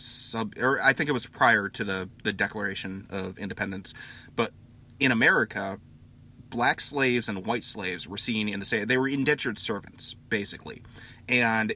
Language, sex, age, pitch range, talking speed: English, male, 30-49, 105-125 Hz, 165 wpm